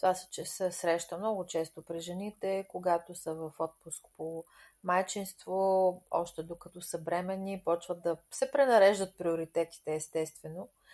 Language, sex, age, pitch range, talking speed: Bulgarian, female, 30-49, 165-210 Hz, 130 wpm